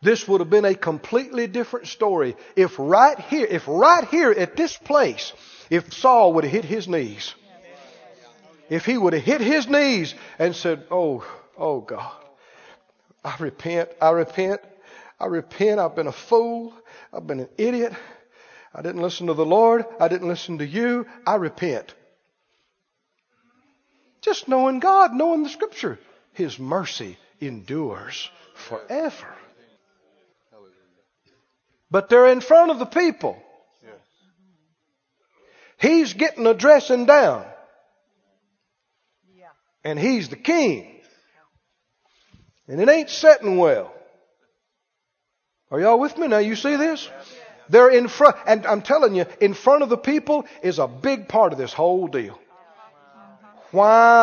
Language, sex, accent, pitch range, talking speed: English, male, American, 175-285 Hz, 135 wpm